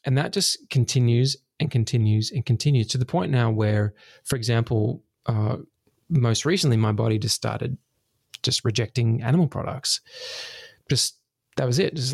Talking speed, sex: 155 wpm, male